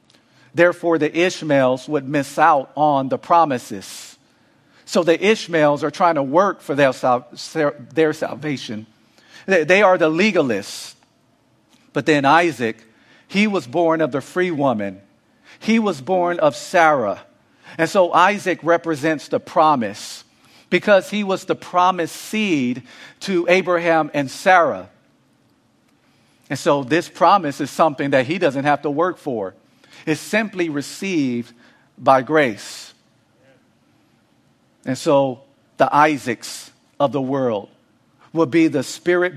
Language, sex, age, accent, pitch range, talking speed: English, male, 50-69, American, 140-175 Hz, 125 wpm